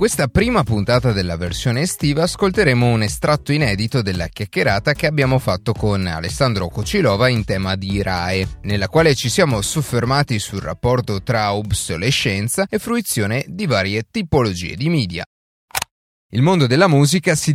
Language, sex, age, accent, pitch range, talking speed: Italian, male, 30-49, native, 105-140 Hz, 145 wpm